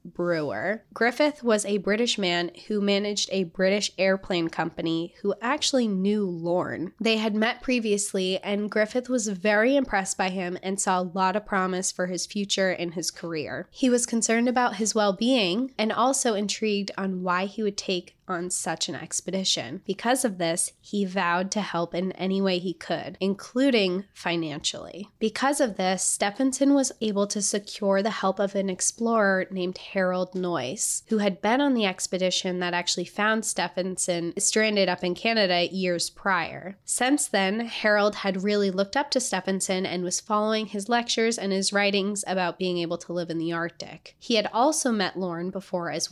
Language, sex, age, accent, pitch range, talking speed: English, female, 20-39, American, 180-215 Hz, 175 wpm